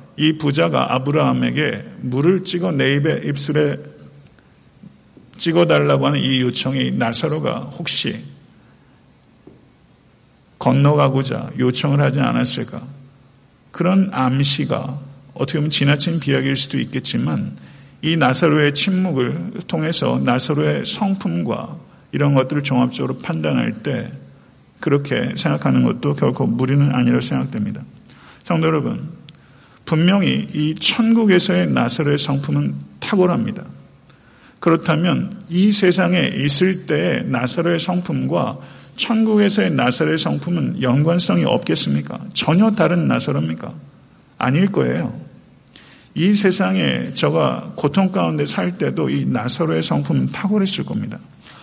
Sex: male